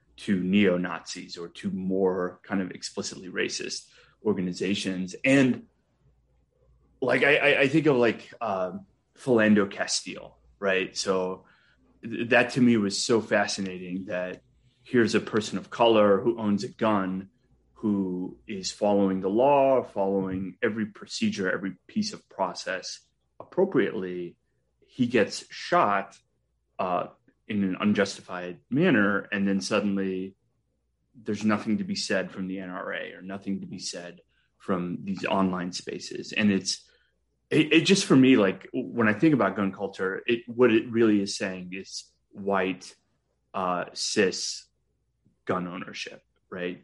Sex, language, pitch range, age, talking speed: male, English, 95-110 Hz, 30-49, 135 wpm